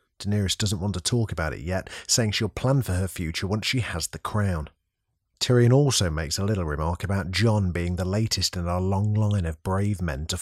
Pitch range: 90-110 Hz